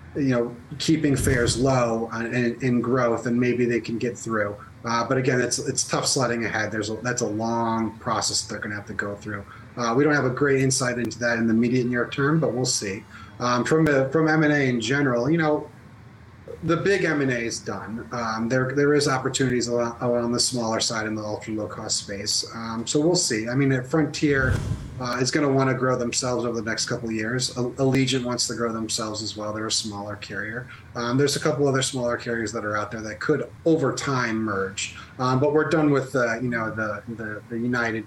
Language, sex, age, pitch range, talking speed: English, male, 30-49, 110-130 Hz, 230 wpm